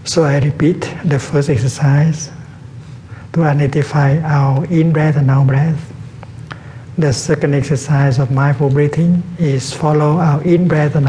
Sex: male